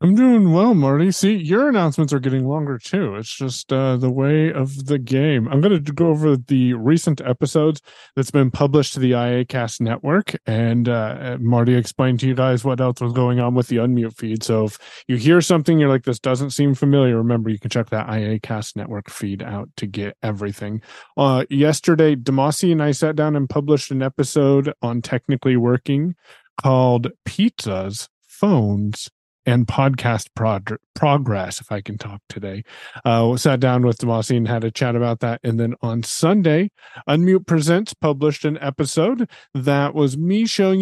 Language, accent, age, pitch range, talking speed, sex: English, American, 30-49, 120-155 Hz, 180 wpm, male